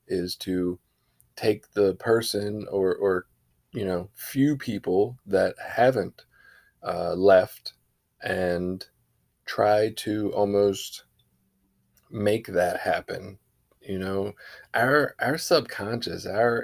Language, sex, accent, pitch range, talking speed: English, male, American, 95-125 Hz, 100 wpm